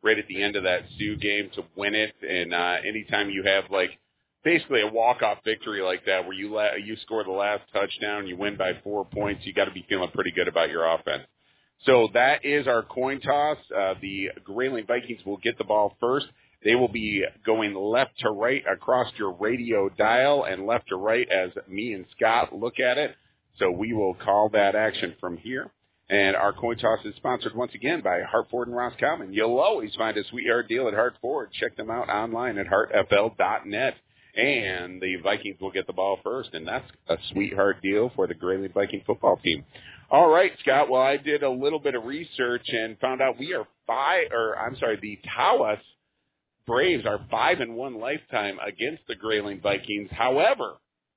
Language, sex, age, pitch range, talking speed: English, male, 40-59, 95-120 Hz, 195 wpm